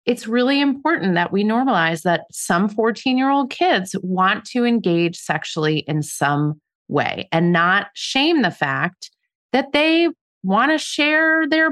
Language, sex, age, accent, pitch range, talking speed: English, female, 30-49, American, 155-230 Hz, 145 wpm